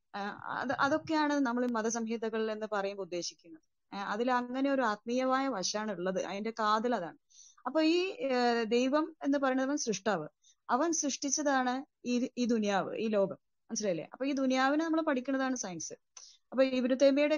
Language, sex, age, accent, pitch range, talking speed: Malayalam, female, 20-39, native, 220-280 Hz, 130 wpm